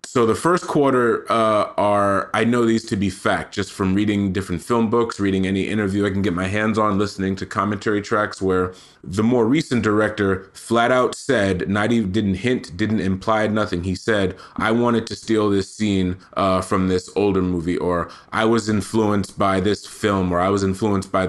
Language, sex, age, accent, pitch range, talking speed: English, male, 20-39, American, 100-120 Hz, 200 wpm